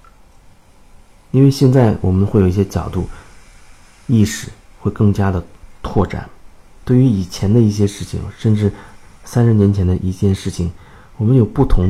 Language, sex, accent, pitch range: Chinese, male, native, 90-110 Hz